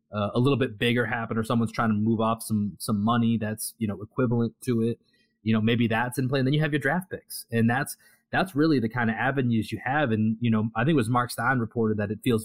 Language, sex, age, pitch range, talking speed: English, male, 30-49, 110-130 Hz, 275 wpm